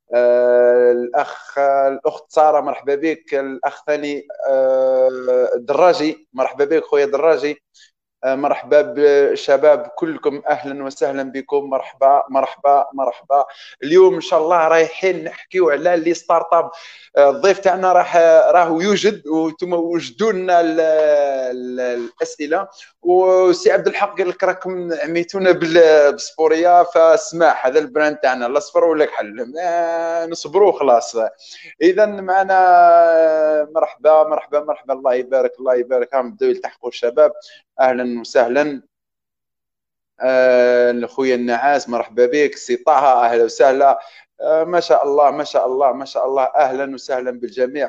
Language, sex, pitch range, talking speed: Arabic, male, 140-195 Hz, 115 wpm